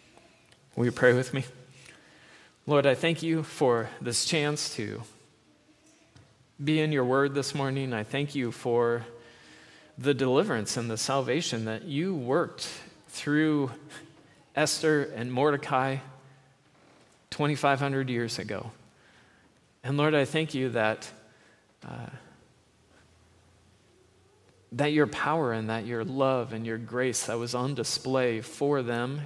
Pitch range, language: 120-145 Hz, English